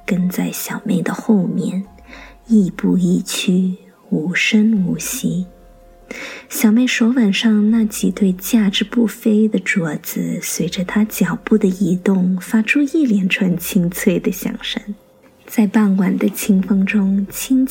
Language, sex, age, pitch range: English, female, 20-39, 190-235 Hz